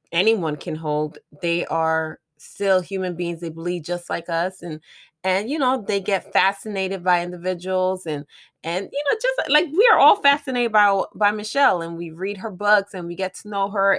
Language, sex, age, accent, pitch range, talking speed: English, female, 20-39, American, 180-225 Hz, 200 wpm